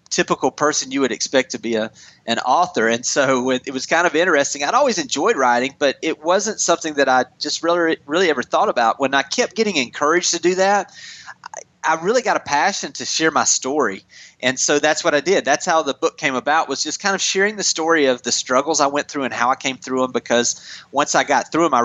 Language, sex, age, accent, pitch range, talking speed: English, male, 30-49, American, 125-165 Hz, 245 wpm